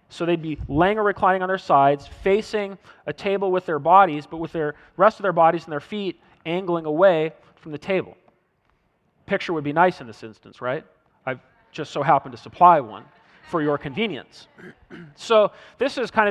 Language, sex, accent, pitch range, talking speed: English, male, American, 150-185 Hz, 190 wpm